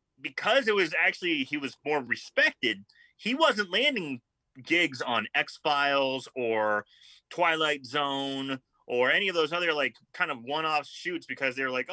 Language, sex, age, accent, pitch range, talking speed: English, male, 30-49, American, 130-180 Hz, 155 wpm